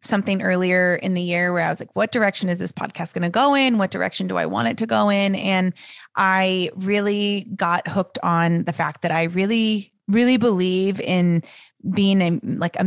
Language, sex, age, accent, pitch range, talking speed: English, female, 20-39, American, 170-195 Hz, 210 wpm